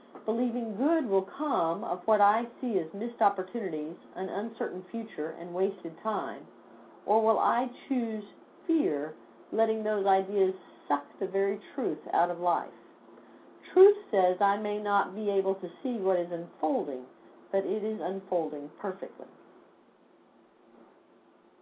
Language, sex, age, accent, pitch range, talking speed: English, female, 50-69, American, 165-220 Hz, 135 wpm